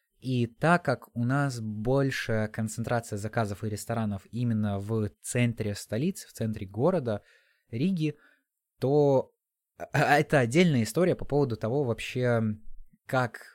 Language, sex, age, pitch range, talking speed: Russian, male, 20-39, 110-140 Hz, 120 wpm